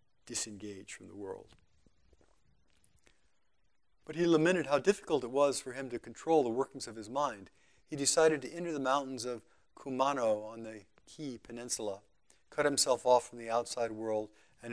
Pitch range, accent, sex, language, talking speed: 110-135 Hz, American, male, English, 165 wpm